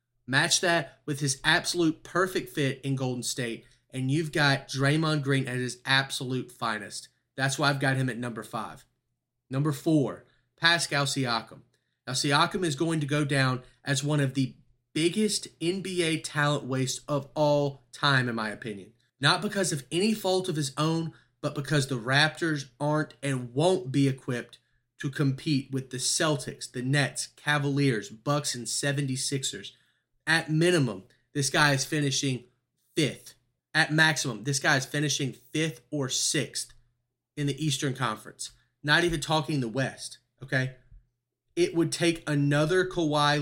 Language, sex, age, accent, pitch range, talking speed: English, male, 30-49, American, 125-150 Hz, 155 wpm